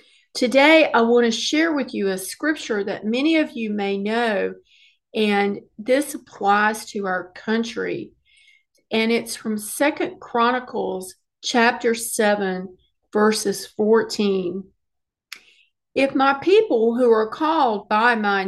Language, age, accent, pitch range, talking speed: English, 50-69, American, 200-270 Hz, 125 wpm